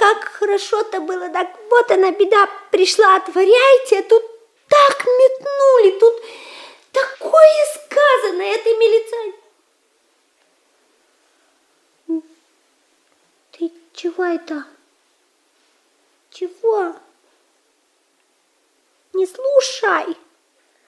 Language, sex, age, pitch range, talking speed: Russian, female, 30-49, 335-440 Hz, 70 wpm